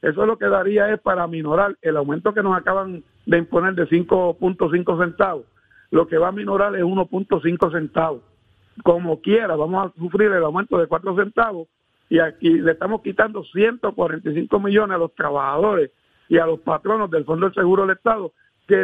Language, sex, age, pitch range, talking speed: Spanish, male, 60-79, 165-210 Hz, 180 wpm